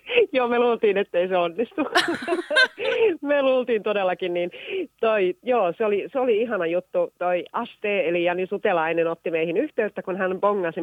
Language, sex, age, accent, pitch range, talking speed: Finnish, female, 30-49, native, 160-220 Hz, 160 wpm